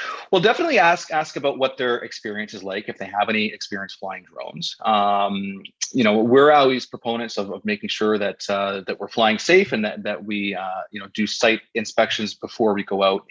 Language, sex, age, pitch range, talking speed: English, male, 30-49, 100-130 Hz, 210 wpm